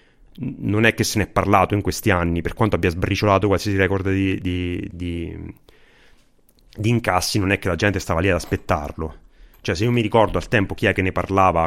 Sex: male